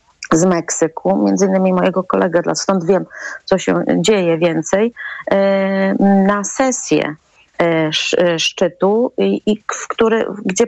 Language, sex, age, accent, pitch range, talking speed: Polish, female, 30-49, native, 175-230 Hz, 95 wpm